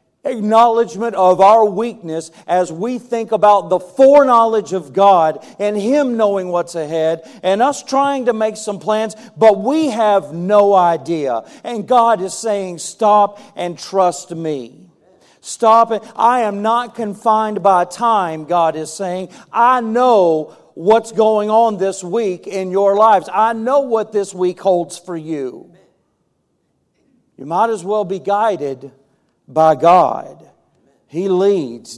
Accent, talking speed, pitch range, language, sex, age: American, 145 wpm, 140-215 Hz, English, male, 50-69